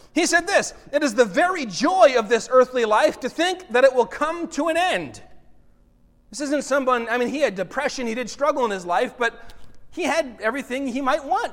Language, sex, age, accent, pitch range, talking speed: English, male, 30-49, American, 210-280 Hz, 220 wpm